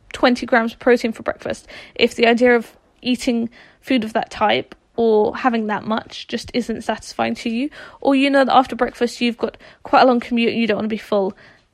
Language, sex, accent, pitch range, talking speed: English, female, British, 230-270 Hz, 220 wpm